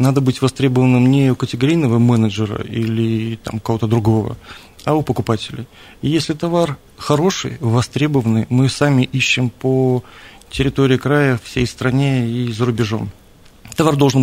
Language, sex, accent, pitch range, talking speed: Russian, male, native, 115-135 Hz, 130 wpm